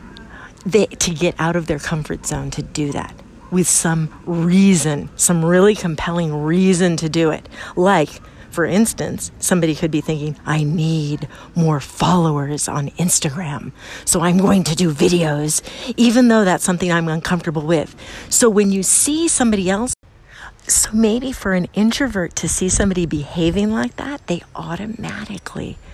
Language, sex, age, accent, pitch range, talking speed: English, female, 50-69, American, 165-220 Hz, 155 wpm